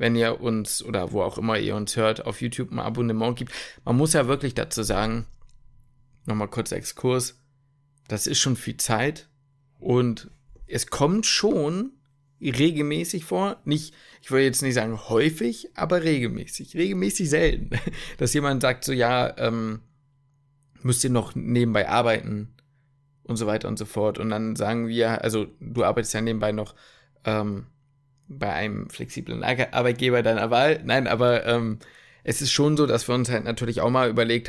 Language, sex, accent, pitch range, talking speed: German, male, German, 115-140 Hz, 165 wpm